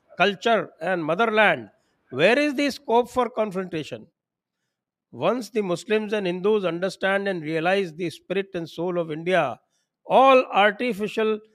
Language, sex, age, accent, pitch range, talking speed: English, male, 60-79, Indian, 150-200 Hz, 130 wpm